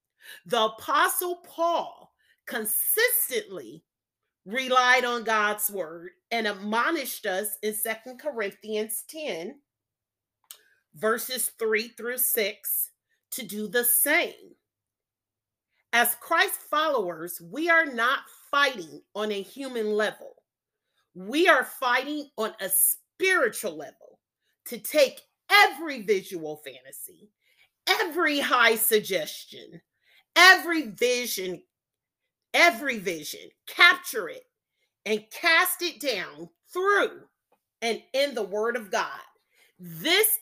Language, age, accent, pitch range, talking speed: English, 40-59, American, 215-330 Hz, 100 wpm